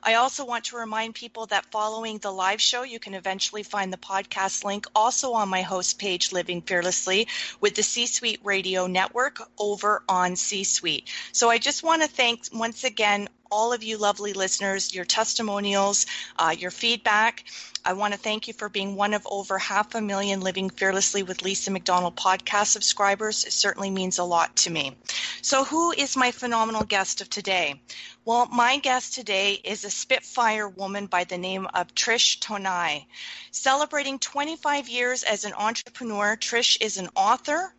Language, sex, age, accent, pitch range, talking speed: English, female, 30-49, American, 195-240 Hz, 175 wpm